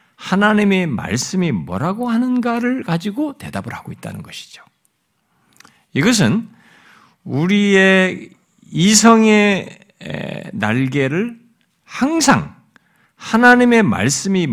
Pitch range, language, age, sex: 145-220 Hz, Korean, 60-79, male